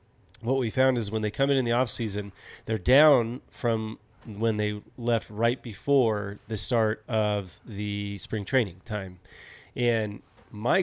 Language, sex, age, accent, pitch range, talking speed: English, male, 30-49, American, 105-120 Hz, 160 wpm